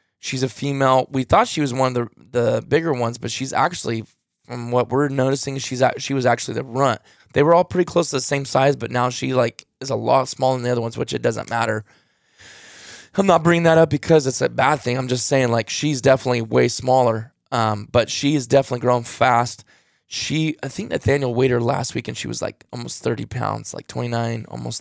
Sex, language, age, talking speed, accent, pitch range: male, English, 20-39, 230 wpm, American, 120-150 Hz